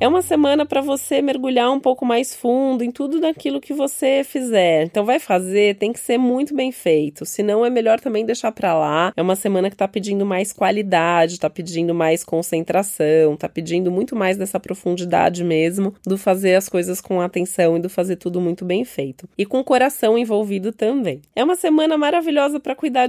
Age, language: 20-39, Portuguese